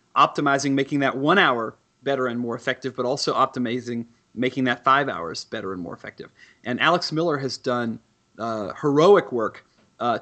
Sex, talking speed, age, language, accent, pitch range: male, 170 wpm, 30-49, English, American, 125-145 Hz